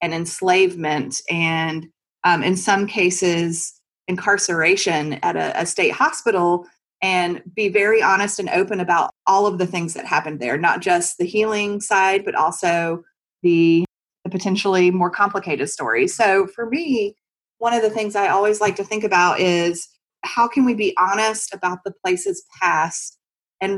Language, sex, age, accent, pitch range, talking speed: English, female, 30-49, American, 175-205 Hz, 160 wpm